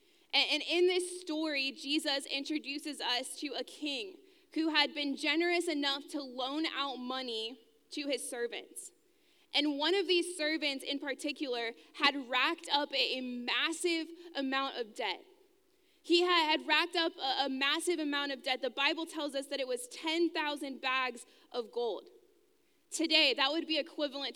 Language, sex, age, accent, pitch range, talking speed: English, female, 20-39, American, 280-355 Hz, 155 wpm